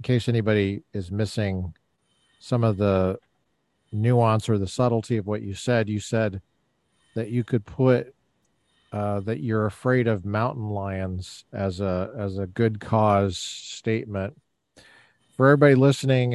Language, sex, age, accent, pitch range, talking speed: English, male, 40-59, American, 100-125 Hz, 145 wpm